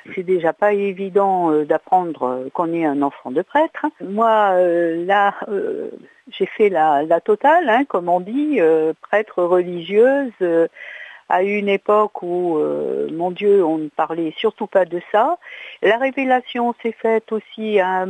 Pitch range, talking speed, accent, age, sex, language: 165-205 Hz, 165 wpm, French, 60-79, female, French